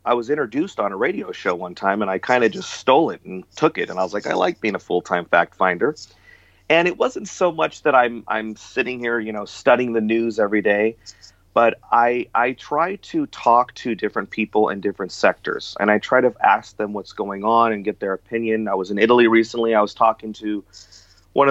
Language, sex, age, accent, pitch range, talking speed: English, male, 30-49, American, 100-120 Hz, 230 wpm